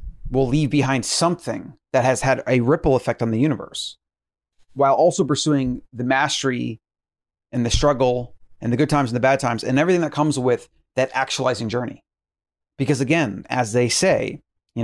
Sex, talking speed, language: male, 175 wpm, English